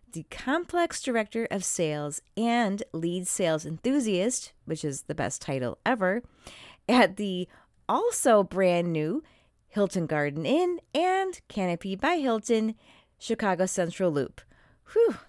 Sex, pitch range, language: female, 165-235 Hz, English